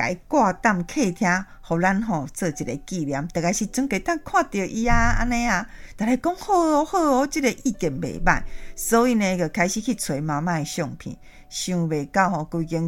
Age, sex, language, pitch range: 50-69, female, Chinese, 170-275 Hz